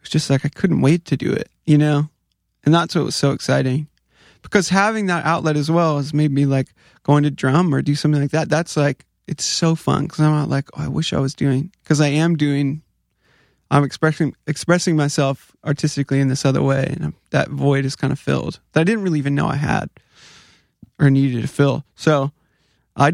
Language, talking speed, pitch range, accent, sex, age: English, 220 wpm, 135-155 Hz, American, male, 20-39